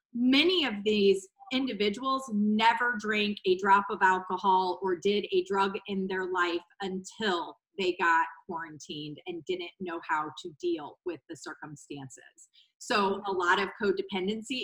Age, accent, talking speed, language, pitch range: 30-49, American, 145 wpm, English, 190-230 Hz